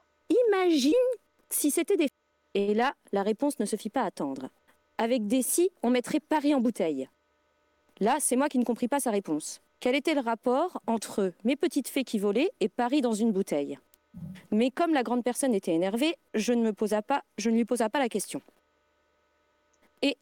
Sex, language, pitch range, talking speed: female, French, 200-275 Hz, 200 wpm